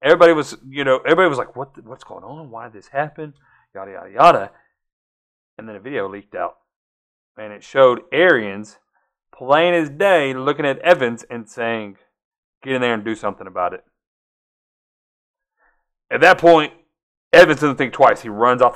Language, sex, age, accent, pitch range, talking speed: English, male, 30-49, American, 110-155 Hz, 175 wpm